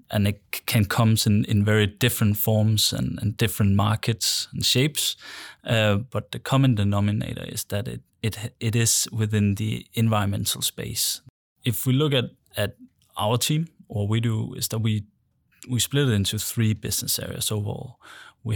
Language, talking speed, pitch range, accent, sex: English, 170 wpm, 105-125 Hz, Danish, male